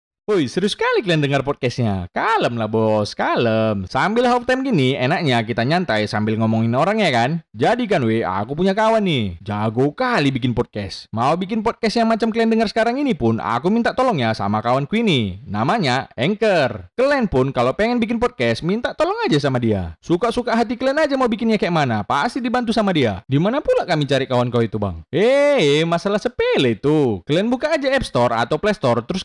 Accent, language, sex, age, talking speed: native, Indonesian, male, 20-39, 195 wpm